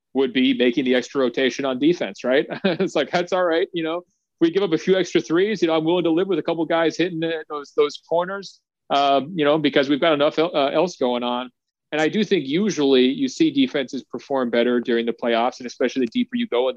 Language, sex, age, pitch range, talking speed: English, male, 30-49, 120-170 Hz, 250 wpm